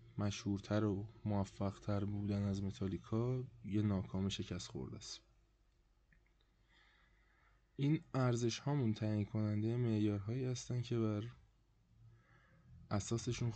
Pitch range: 100-115 Hz